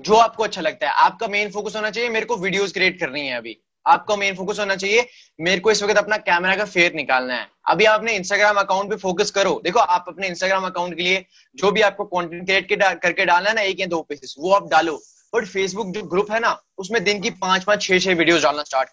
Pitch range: 170-210 Hz